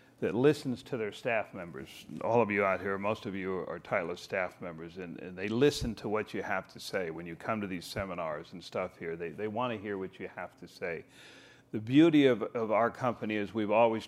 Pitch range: 105-130 Hz